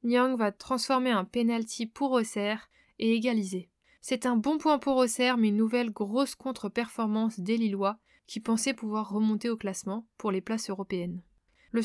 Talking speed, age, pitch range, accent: 165 wpm, 20-39, 210-255 Hz, French